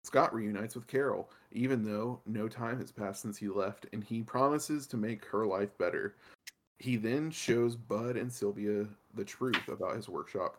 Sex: male